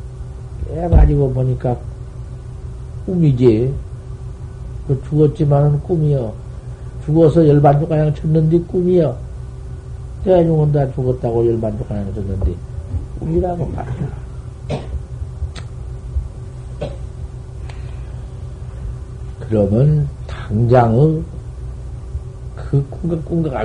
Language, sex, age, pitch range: Korean, male, 50-69, 115-170 Hz